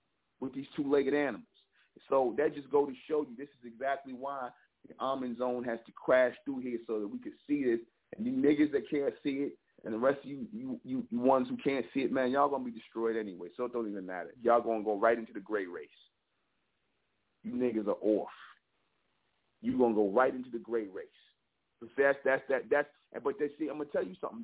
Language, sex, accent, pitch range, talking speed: English, male, American, 135-185 Hz, 230 wpm